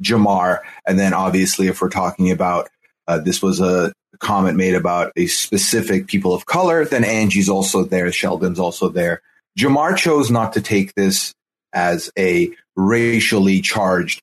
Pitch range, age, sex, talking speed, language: 100-135 Hz, 30-49, male, 155 wpm, English